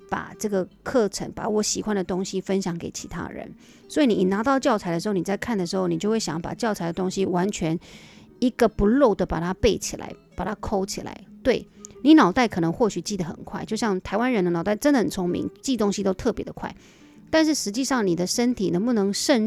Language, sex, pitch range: Chinese, female, 190-230 Hz